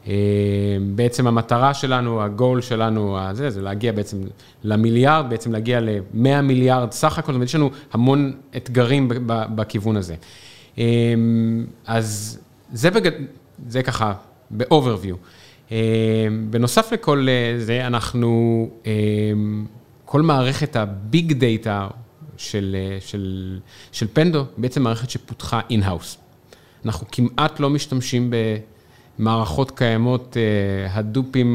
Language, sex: Hebrew, male